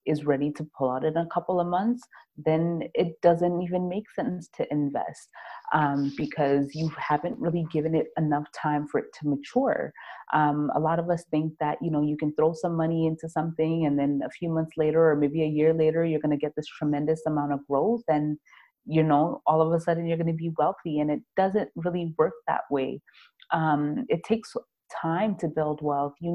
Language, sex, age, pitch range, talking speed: English, female, 30-49, 150-175 Hz, 215 wpm